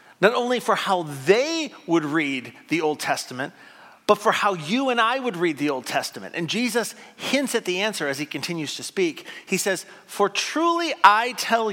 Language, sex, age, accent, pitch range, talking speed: English, male, 40-59, American, 175-240 Hz, 195 wpm